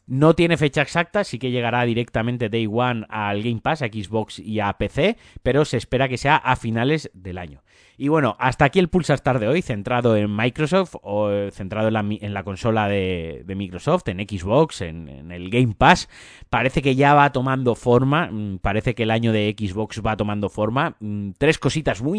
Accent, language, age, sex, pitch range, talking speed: Spanish, Spanish, 30-49, male, 105-130 Hz, 195 wpm